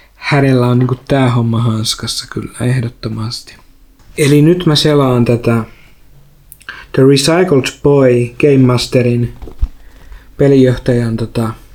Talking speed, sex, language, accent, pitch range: 95 wpm, male, Finnish, native, 120-140 Hz